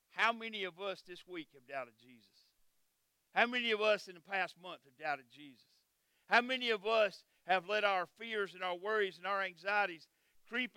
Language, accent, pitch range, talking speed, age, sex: English, American, 185-240 Hz, 195 wpm, 50-69, male